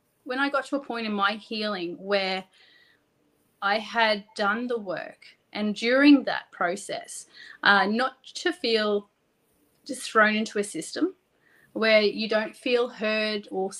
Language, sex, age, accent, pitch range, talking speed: English, female, 30-49, Australian, 200-245 Hz, 150 wpm